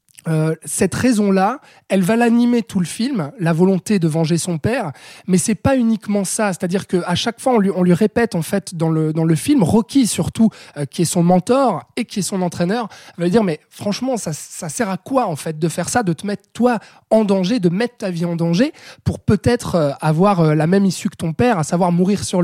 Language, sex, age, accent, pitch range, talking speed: French, male, 20-39, French, 170-220 Hz, 240 wpm